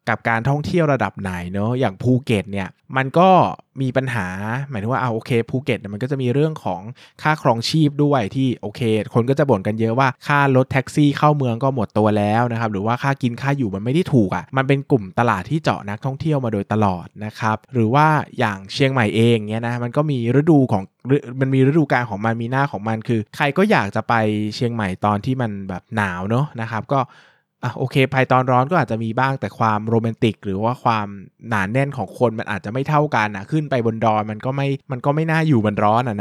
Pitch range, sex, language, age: 110-140 Hz, male, Thai, 20-39